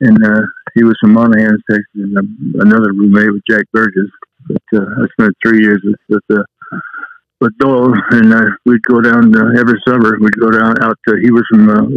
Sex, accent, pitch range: male, American, 105-120 Hz